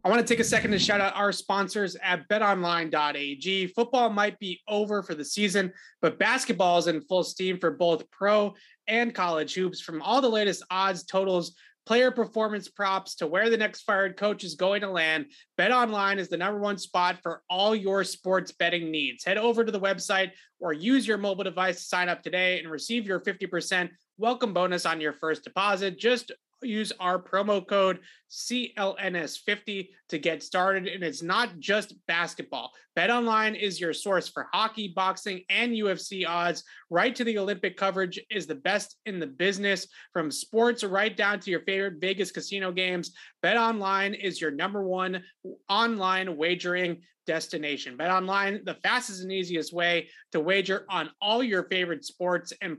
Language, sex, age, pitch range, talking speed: English, male, 30-49, 175-205 Hz, 180 wpm